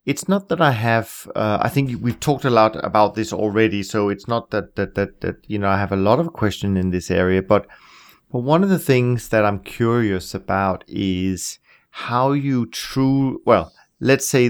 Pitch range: 95-120 Hz